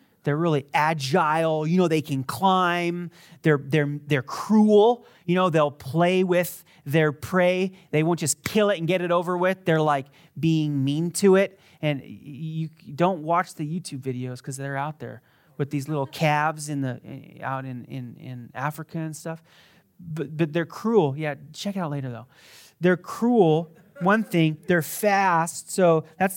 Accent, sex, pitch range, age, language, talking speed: American, male, 150-195 Hz, 30-49, English, 175 wpm